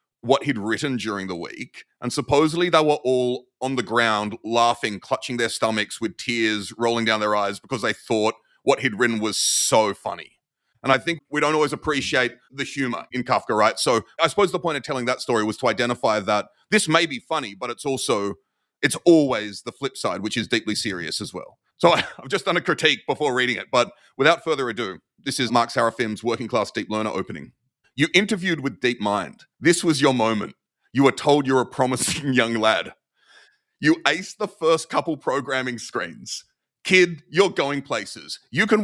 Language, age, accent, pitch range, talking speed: English, 30-49, Australian, 115-155 Hz, 195 wpm